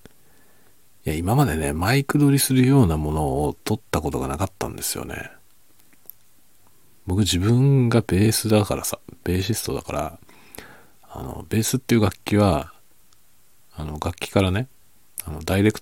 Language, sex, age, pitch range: Japanese, male, 40-59, 80-110 Hz